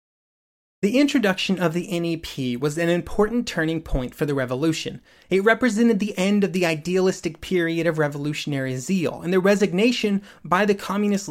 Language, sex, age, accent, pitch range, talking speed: English, male, 30-49, American, 160-210 Hz, 160 wpm